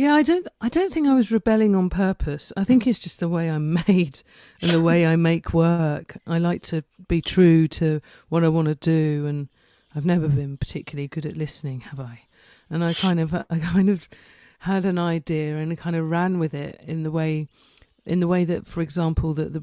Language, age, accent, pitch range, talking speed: English, 40-59, British, 150-165 Hz, 225 wpm